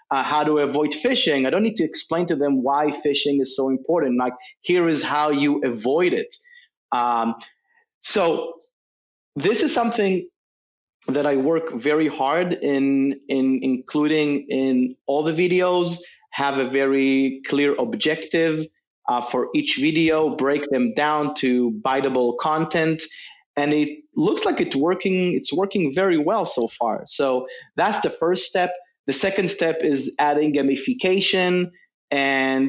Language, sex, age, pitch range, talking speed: English, male, 30-49, 135-185 Hz, 145 wpm